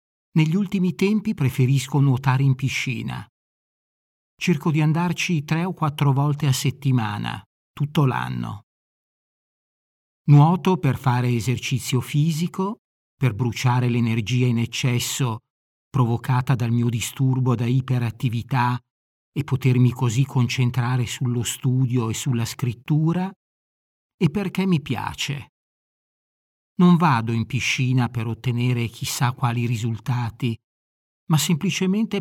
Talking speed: 110 wpm